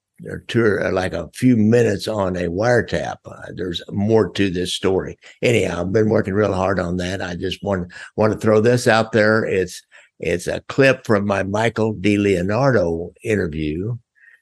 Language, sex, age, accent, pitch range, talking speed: English, male, 60-79, American, 90-110 Hz, 180 wpm